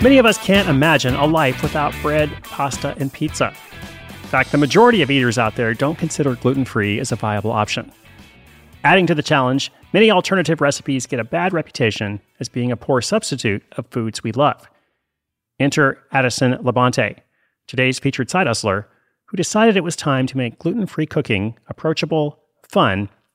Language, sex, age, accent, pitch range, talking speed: English, male, 30-49, American, 115-155 Hz, 165 wpm